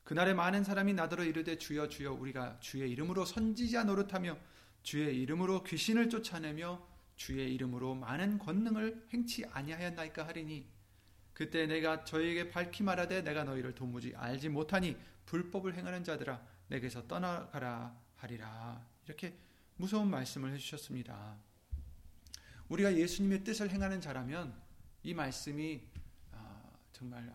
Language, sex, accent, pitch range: Korean, male, native, 120-185 Hz